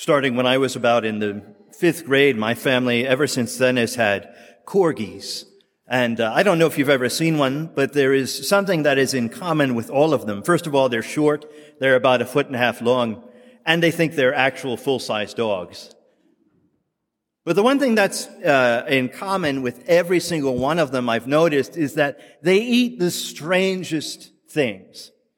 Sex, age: male, 40-59